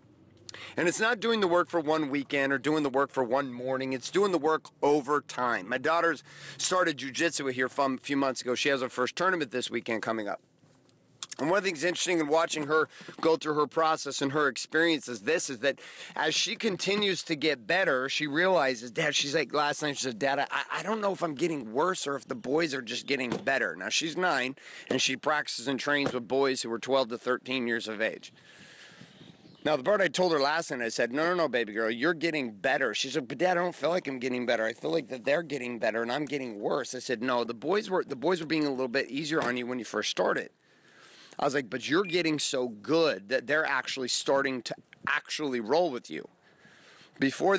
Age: 40-59